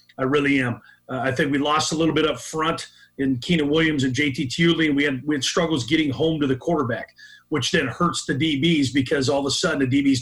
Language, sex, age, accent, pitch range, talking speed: English, male, 40-59, American, 135-160 Hz, 245 wpm